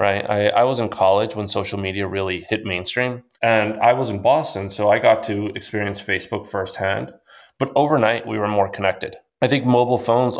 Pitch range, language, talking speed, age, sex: 95-110 Hz, English, 195 wpm, 20-39, male